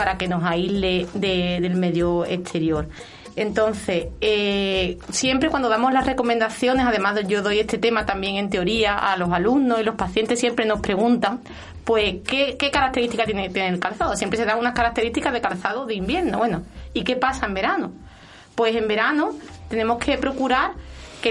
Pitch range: 195-255 Hz